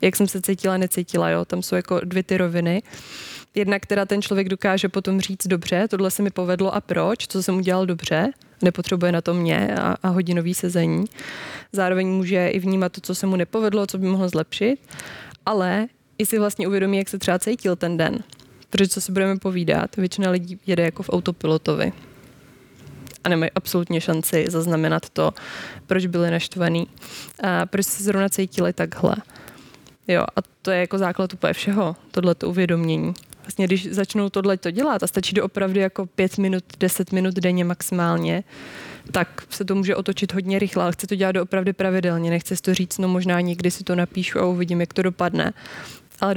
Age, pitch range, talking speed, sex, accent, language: 20-39, 175-195 Hz, 180 wpm, female, native, Czech